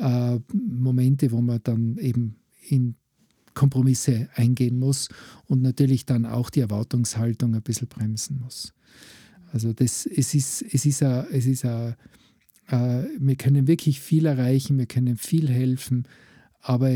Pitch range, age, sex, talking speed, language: 120-135 Hz, 50-69, male, 140 wpm, German